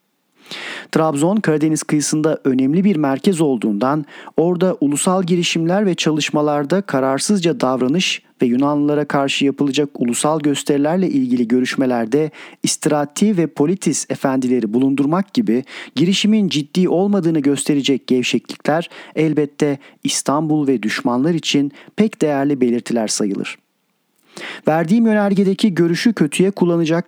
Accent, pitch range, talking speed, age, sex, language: native, 135-165 Hz, 105 wpm, 40-59, male, Turkish